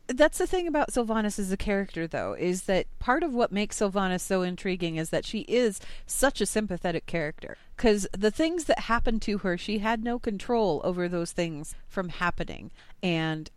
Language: English